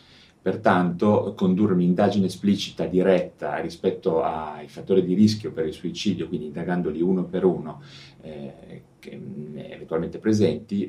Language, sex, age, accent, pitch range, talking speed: Italian, male, 30-49, native, 80-100 Hz, 115 wpm